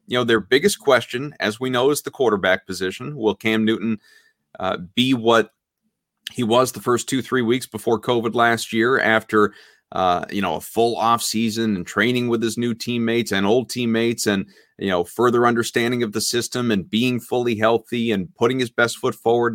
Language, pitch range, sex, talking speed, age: English, 105-125 Hz, male, 195 wpm, 30-49